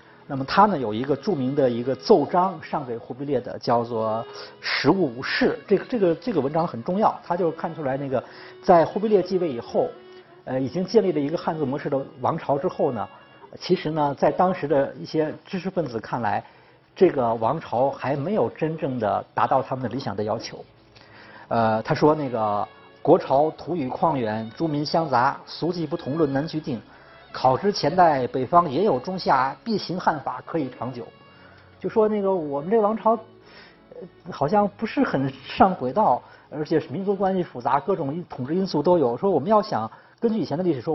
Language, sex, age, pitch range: Chinese, male, 50-69, 135-195 Hz